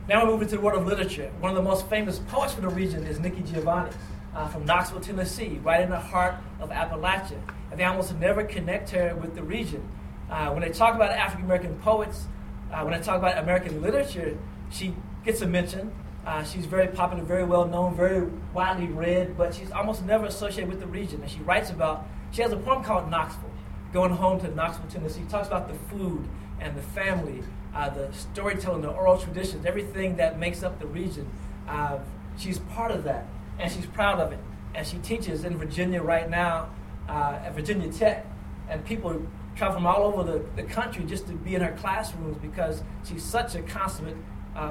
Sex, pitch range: male, 170-200 Hz